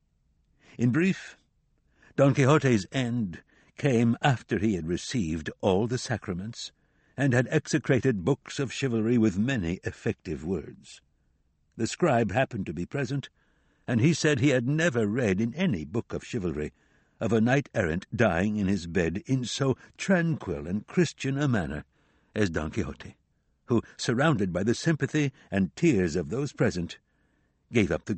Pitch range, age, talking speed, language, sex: 105-145 Hz, 60-79, 150 wpm, English, male